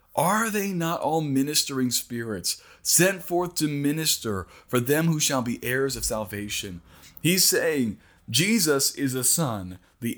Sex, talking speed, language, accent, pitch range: male, 145 wpm, English, American, 115-150 Hz